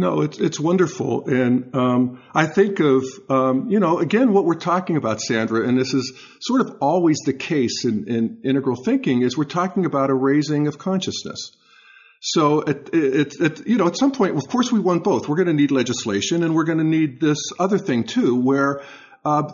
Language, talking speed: English, 210 wpm